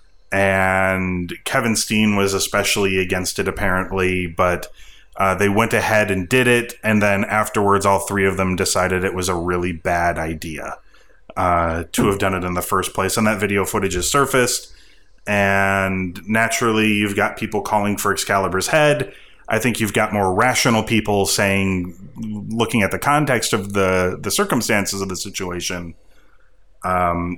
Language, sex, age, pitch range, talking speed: English, male, 30-49, 90-105 Hz, 160 wpm